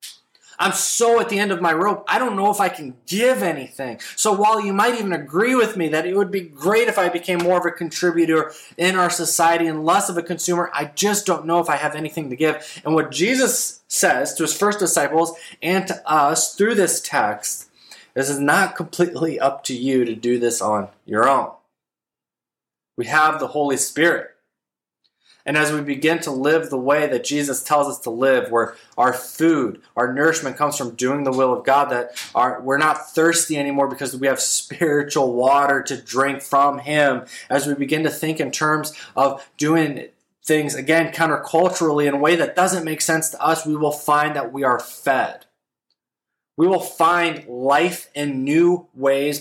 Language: English